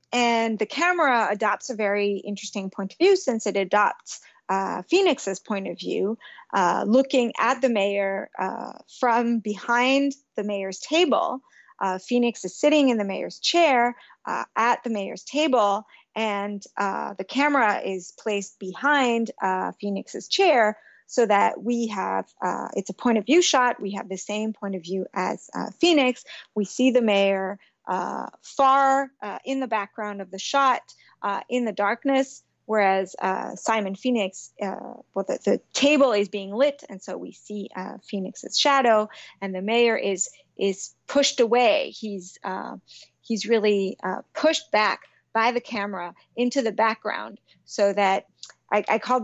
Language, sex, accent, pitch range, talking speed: English, female, American, 200-255 Hz, 165 wpm